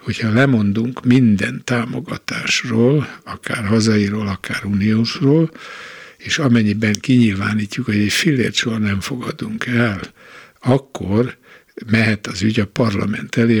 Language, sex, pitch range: Hungarian, male, 105-125 Hz